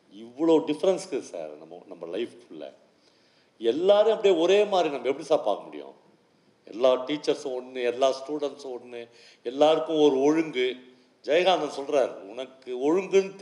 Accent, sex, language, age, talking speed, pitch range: native, male, Tamil, 50-69, 120 wpm, 150-230 Hz